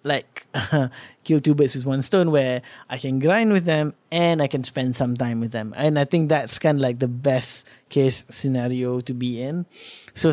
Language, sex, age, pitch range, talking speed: English, male, 20-39, 125-150 Hz, 215 wpm